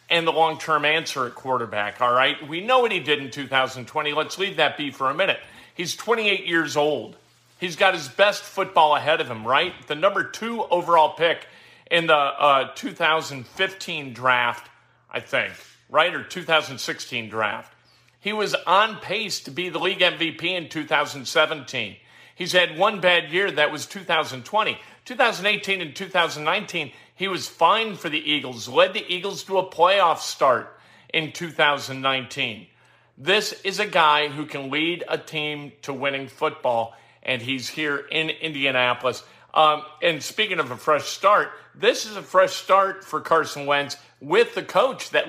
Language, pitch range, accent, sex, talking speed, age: English, 140-185 Hz, American, male, 165 wpm, 50-69